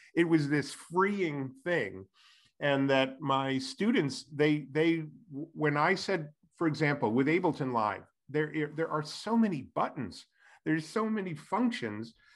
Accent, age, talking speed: American, 40-59, 140 wpm